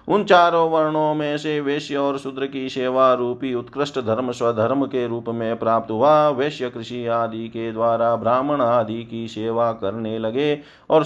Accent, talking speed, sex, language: native, 170 wpm, male, Hindi